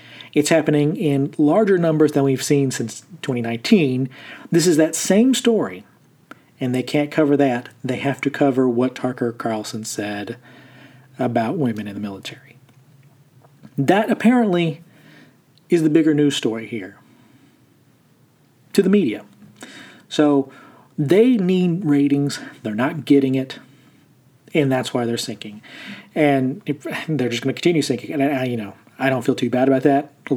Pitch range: 125-150 Hz